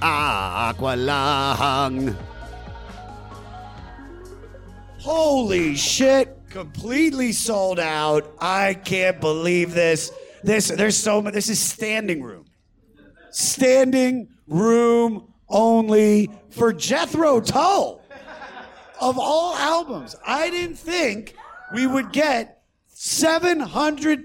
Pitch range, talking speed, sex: 135-225 Hz, 85 wpm, male